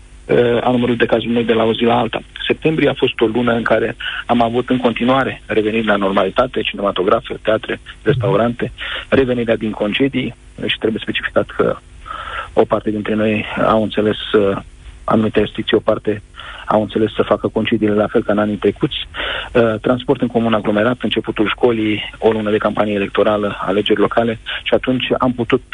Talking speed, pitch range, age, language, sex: 175 wpm, 105-120 Hz, 40-59, Romanian, male